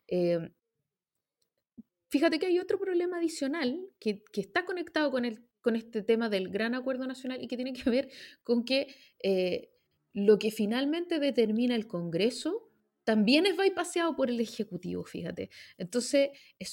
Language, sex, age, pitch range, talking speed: Spanish, female, 20-39, 235-310 Hz, 160 wpm